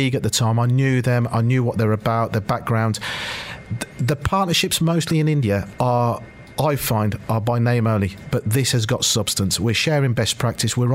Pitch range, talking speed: 110-130 Hz, 190 wpm